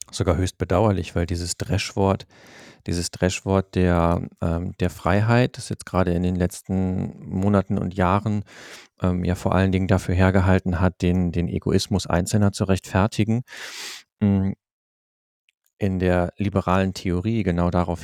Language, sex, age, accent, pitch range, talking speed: German, male, 40-59, German, 90-105 Hz, 135 wpm